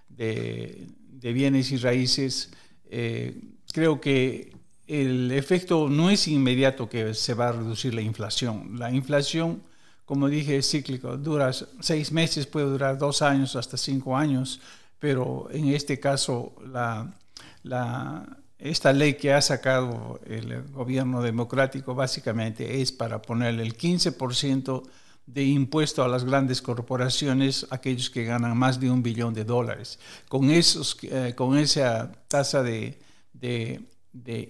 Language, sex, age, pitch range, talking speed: English, male, 60-79, 125-140 Hz, 135 wpm